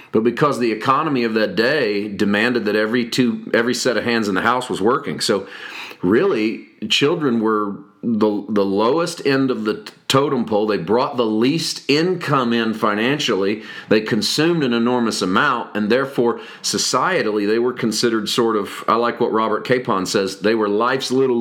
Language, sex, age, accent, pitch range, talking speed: English, male, 40-59, American, 110-150 Hz, 175 wpm